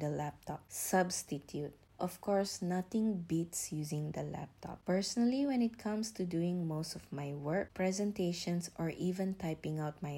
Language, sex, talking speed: English, female, 145 wpm